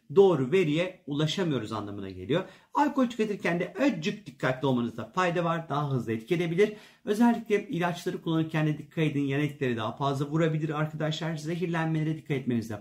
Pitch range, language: 140-195 Hz, Turkish